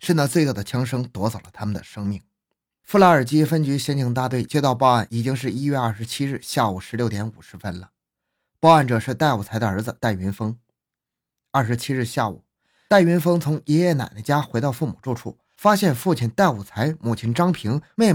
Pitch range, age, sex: 110-155 Hz, 20-39, male